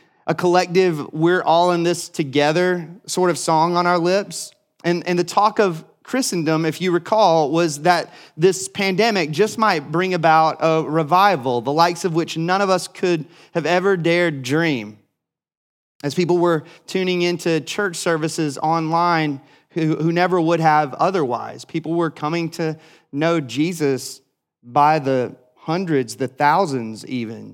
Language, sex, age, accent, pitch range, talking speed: English, male, 30-49, American, 150-180 Hz, 155 wpm